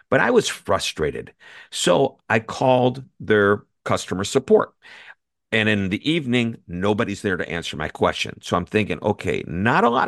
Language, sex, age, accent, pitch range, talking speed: English, male, 50-69, American, 100-140 Hz, 160 wpm